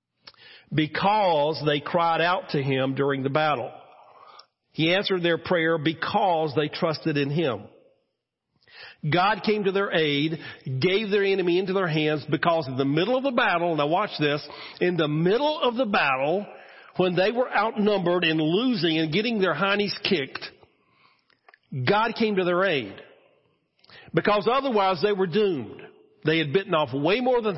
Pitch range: 135-190 Hz